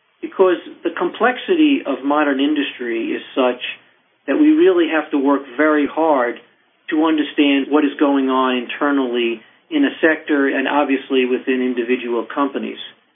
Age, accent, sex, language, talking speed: 50-69, American, male, English, 140 wpm